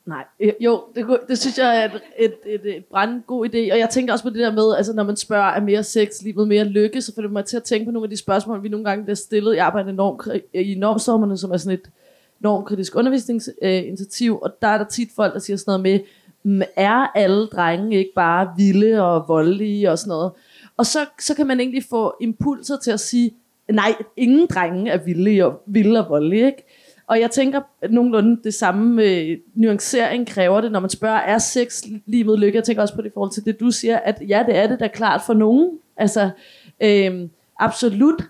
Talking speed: 225 wpm